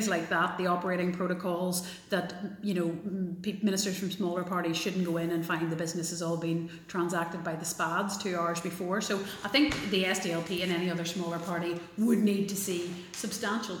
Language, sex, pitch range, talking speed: English, female, 170-195 Hz, 190 wpm